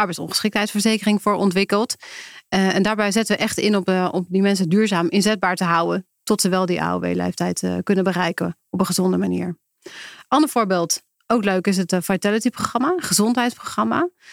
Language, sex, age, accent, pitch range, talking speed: English, female, 30-49, Dutch, 180-210 Hz, 170 wpm